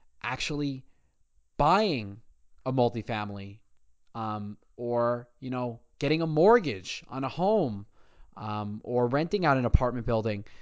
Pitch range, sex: 110-155 Hz, male